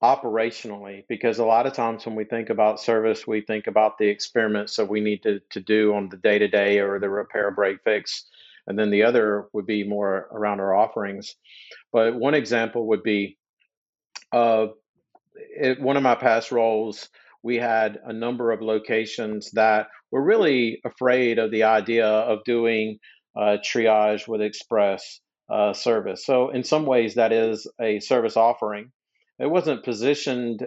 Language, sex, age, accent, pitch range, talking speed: English, male, 50-69, American, 110-120 Hz, 165 wpm